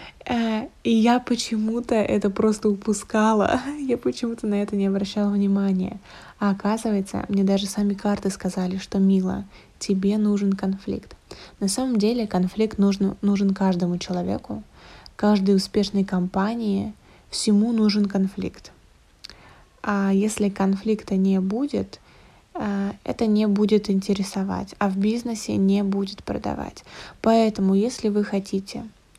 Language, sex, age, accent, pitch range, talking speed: Russian, female, 20-39, native, 195-215 Hz, 120 wpm